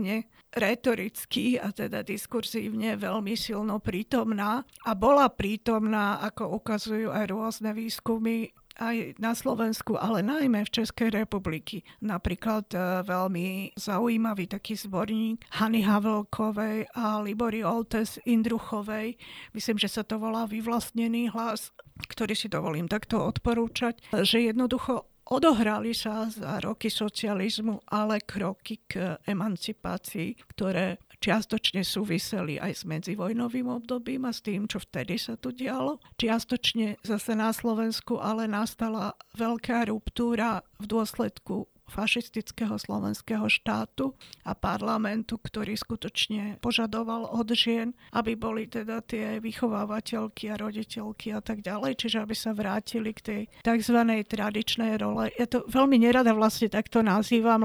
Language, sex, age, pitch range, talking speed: Slovak, female, 50-69, 210-230 Hz, 125 wpm